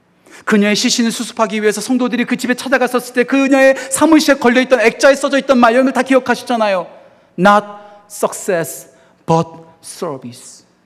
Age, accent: 40-59, native